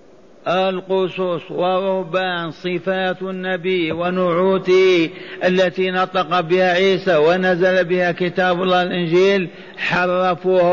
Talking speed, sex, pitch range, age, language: 85 wpm, male, 170-190 Hz, 50-69, Arabic